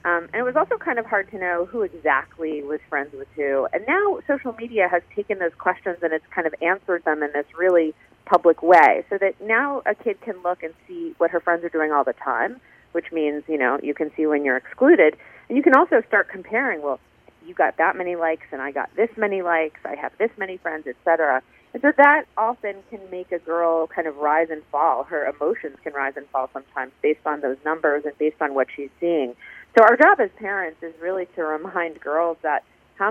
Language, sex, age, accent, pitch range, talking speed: English, female, 40-59, American, 155-205 Hz, 235 wpm